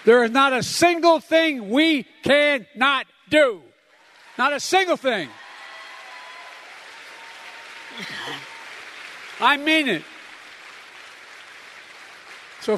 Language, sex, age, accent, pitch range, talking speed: English, male, 60-79, American, 150-220 Hz, 80 wpm